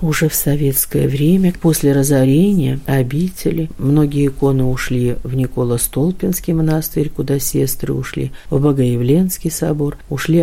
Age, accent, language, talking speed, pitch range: 50-69, native, Russian, 115 wpm, 125-155 Hz